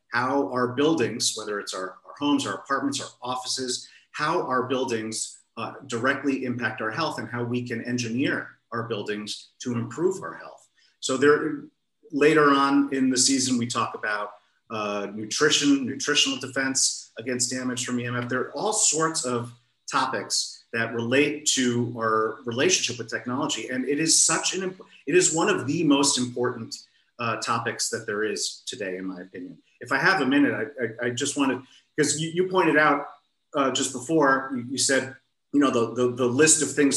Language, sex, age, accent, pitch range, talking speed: English, male, 40-59, American, 120-140 Hz, 180 wpm